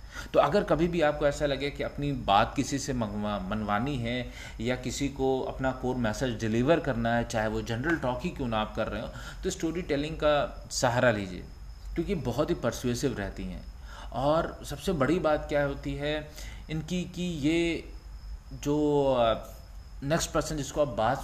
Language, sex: Hindi, male